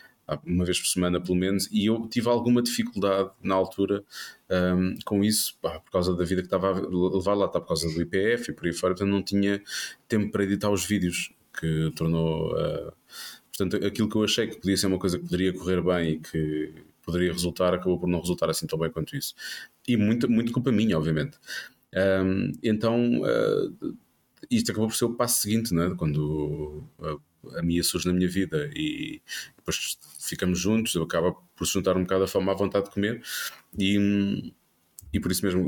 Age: 20-39